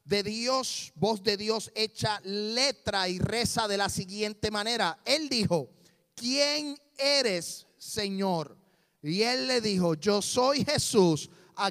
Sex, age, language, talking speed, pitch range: male, 30-49, Spanish, 135 wpm, 175-230 Hz